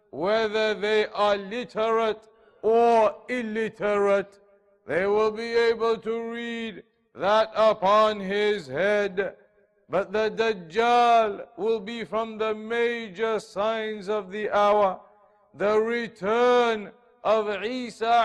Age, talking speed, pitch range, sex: 50-69, 105 wpm, 215-245 Hz, male